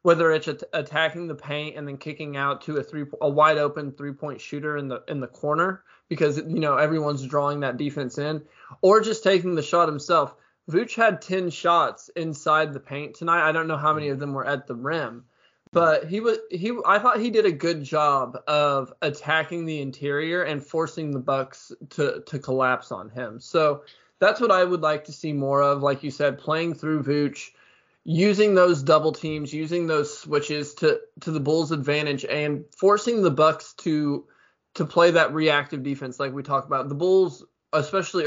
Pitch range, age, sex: 140-165 Hz, 20-39, male